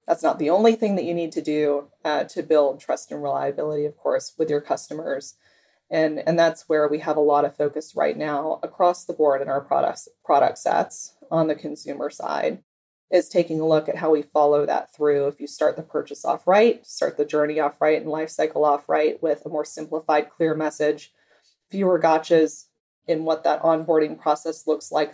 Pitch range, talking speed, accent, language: 150-170 Hz, 205 wpm, American, English